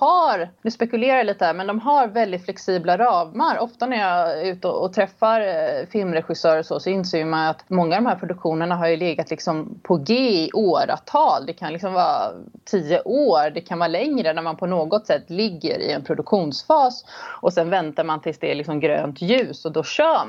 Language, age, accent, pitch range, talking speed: Swedish, 30-49, native, 160-215 Hz, 200 wpm